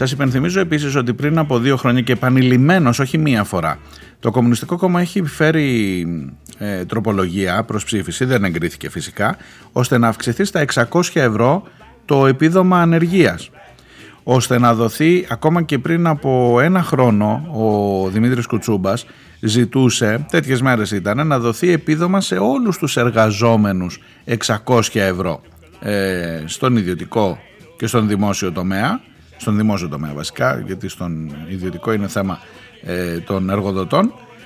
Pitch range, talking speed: 110-165 Hz, 135 wpm